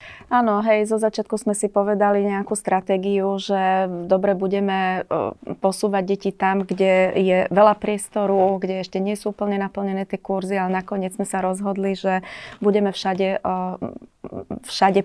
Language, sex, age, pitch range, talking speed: Slovak, female, 30-49, 180-195 Hz, 145 wpm